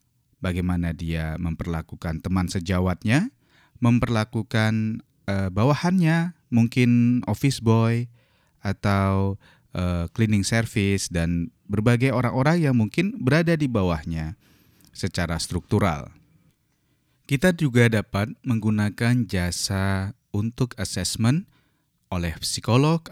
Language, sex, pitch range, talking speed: Indonesian, male, 90-130 Hz, 90 wpm